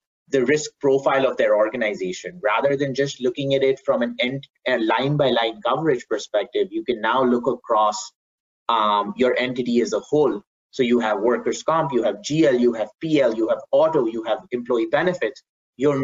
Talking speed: 175 wpm